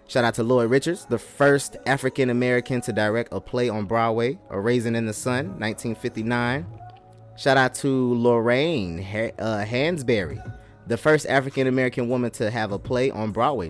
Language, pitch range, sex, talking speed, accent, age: English, 115-140 Hz, male, 160 wpm, American, 20-39